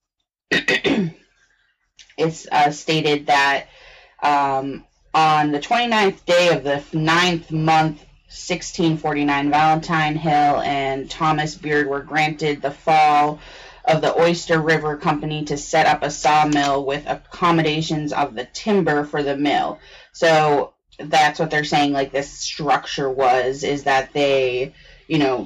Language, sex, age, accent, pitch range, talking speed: English, female, 20-39, American, 140-155 Hz, 130 wpm